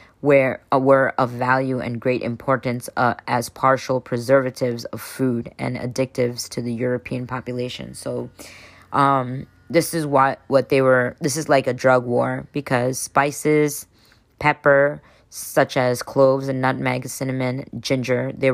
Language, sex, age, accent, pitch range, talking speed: English, female, 20-39, American, 120-135 Hz, 150 wpm